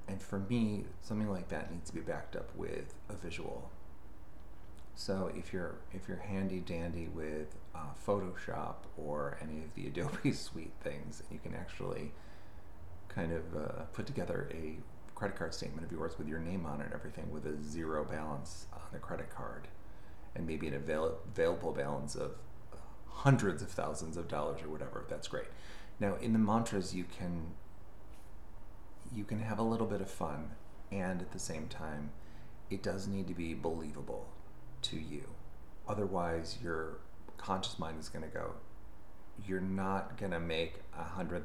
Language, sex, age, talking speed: English, male, 30-49, 165 wpm